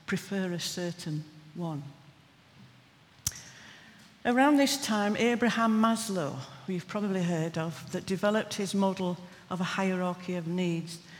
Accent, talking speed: British, 125 wpm